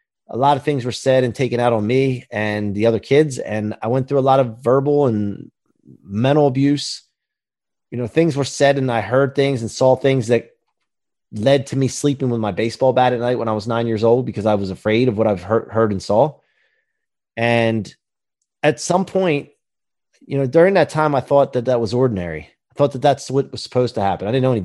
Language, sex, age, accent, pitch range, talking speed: English, male, 30-49, American, 115-150 Hz, 230 wpm